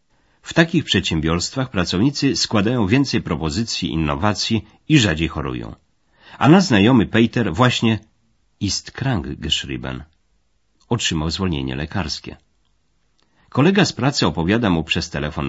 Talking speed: 110 wpm